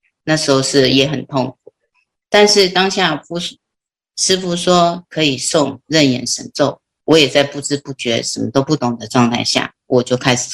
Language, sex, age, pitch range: Chinese, female, 30-49, 125-150 Hz